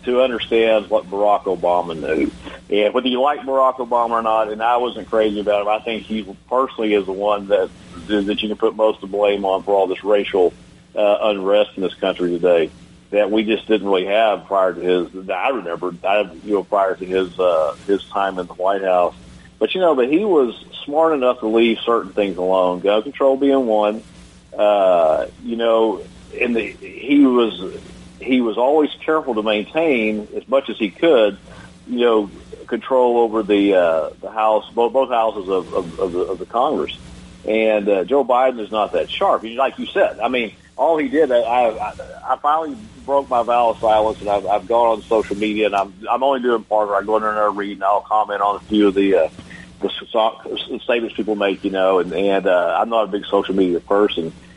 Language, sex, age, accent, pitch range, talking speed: English, male, 50-69, American, 100-120 Hz, 210 wpm